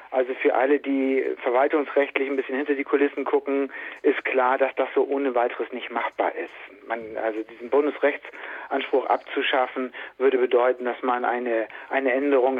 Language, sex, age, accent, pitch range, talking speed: German, male, 40-59, German, 130-155 Hz, 155 wpm